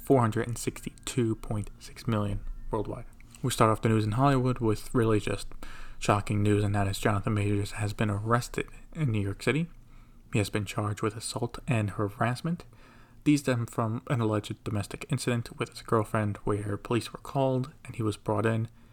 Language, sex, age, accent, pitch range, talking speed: English, male, 20-39, American, 105-120 Hz, 170 wpm